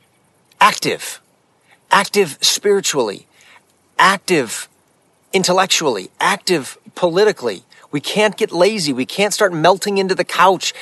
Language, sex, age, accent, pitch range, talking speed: English, male, 40-59, American, 145-190 Hz, 100 wpm